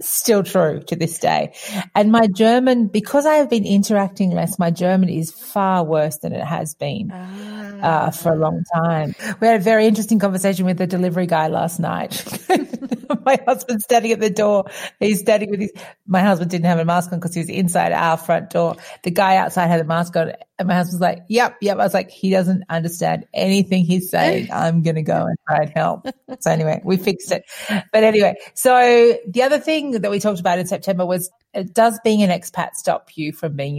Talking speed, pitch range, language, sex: 210 wpm, 170-225 Hz, English, female